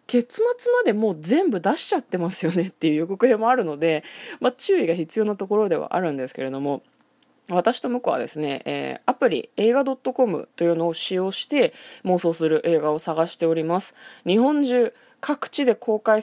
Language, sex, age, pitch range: Japanese, female, 20-39, 160-265 Hz